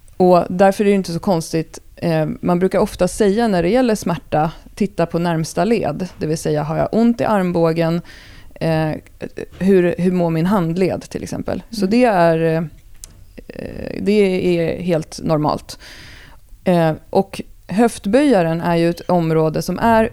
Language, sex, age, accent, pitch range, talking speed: Swedish, female, 30-49, native, 155-195 Hz, 145 wpm